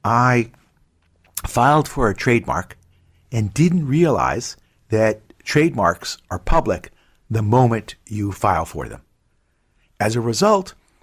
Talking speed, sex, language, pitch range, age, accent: 115 wpm, male, English, 100-140 Hz, 60-79, American